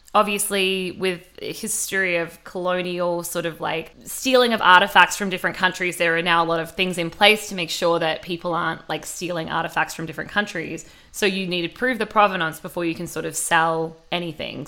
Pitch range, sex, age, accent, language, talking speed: 165-195 Hz, female, 20-39, Australian, English, 200 wpm